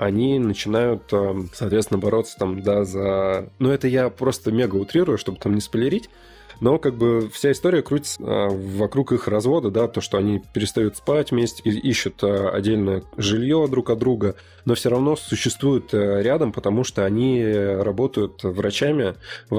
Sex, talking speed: male, 155 wpm